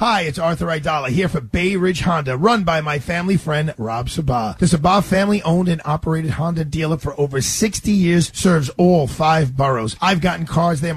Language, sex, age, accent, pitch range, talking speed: English, male, 40-59, American, 150-195 Hz, 195 wpm